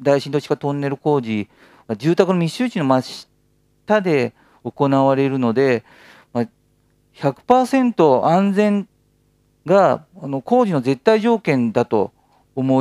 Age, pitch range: 40-59, 120-175 Hz